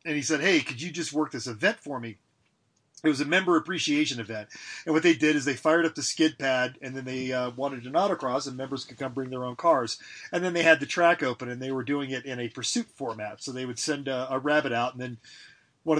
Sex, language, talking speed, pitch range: male, English, 265 wpm, 125-155 Hz